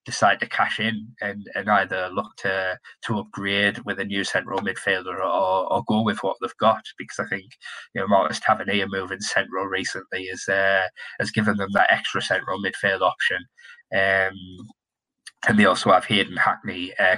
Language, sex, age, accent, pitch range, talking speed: English, male, 20-39, British, 100-115 Hz, 180 wpm